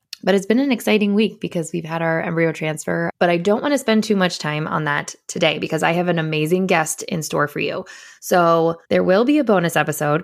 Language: English